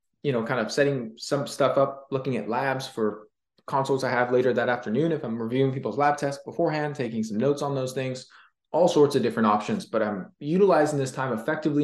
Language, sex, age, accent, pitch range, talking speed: English, male, 20-39, American, 120-150 Hz, 215 wpm